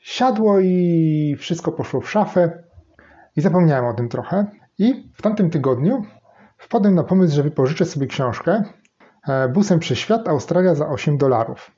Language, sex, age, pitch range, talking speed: Polish, male, 30-49, 135-180 Hz, 155 wpm